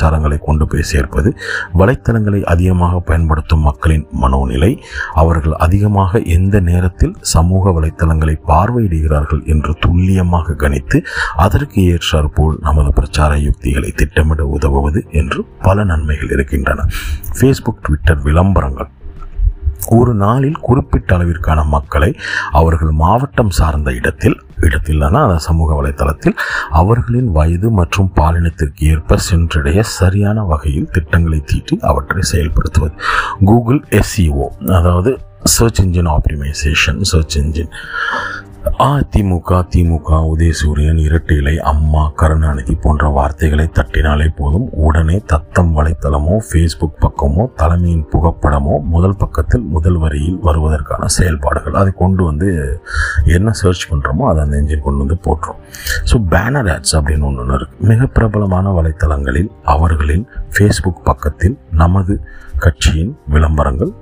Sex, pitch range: male, 75-90 Hz